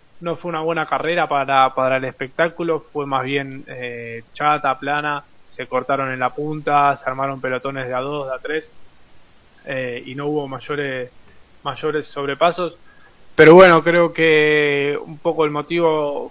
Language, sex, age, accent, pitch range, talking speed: Spanish, male, 20-39, Argentinian, 130-155 Hz, 160 wpm